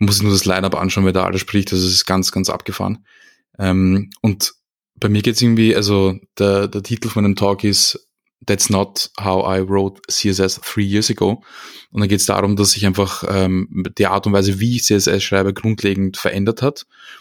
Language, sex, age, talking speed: German, male, 20-39, 210 wpm